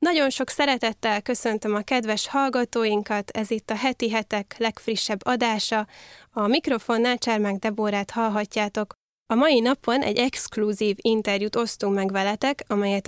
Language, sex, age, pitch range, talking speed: Hungarian, female, 10-29, 205-235 Hz, 135 wpm